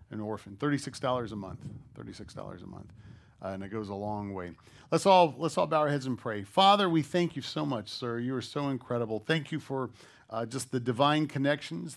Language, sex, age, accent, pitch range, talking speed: English, male, 40-59, American, 105-135 Hz, 225 wpm